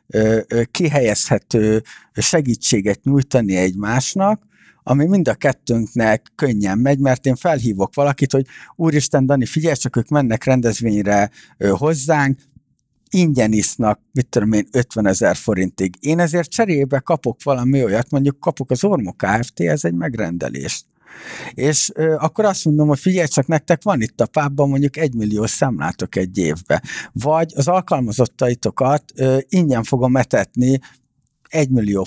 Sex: male